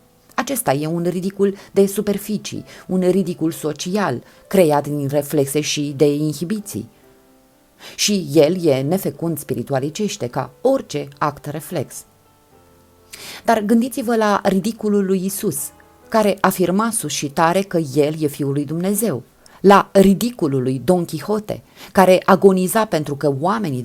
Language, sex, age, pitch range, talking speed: Romanian, female, 30-49, 145-200 Hz, 130 wpm